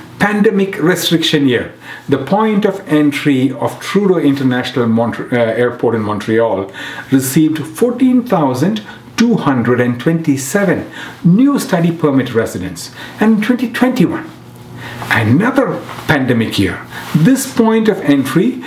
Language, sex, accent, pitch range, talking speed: English, male, Indian, 125-200 Hz, 100 wpm